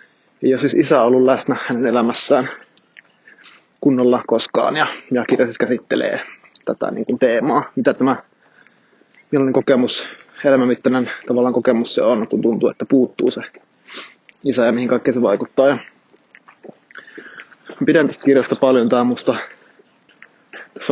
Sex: male